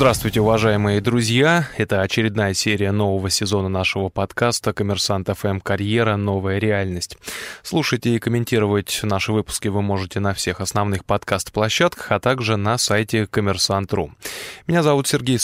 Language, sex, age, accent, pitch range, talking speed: Russian, male, 20-39, native, 100-120 Hz, 130 wpm